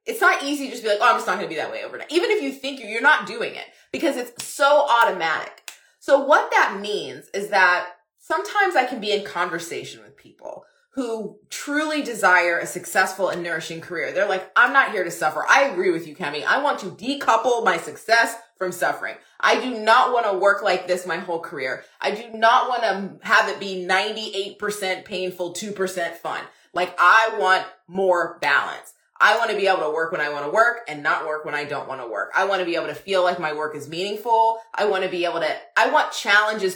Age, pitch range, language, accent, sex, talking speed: 20-39, 175-235 Hz, English, American, female, 230 wpm